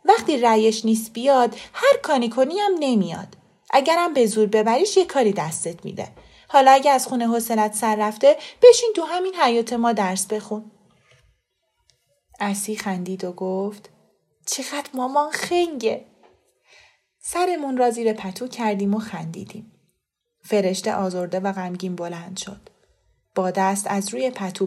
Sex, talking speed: female, 135 wpm